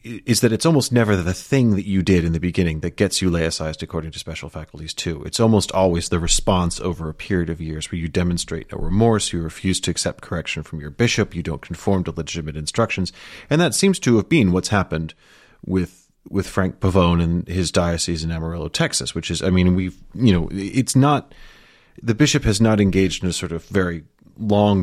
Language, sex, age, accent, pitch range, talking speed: English, male, 30-49, American, 85-105 Hz, 215 wpm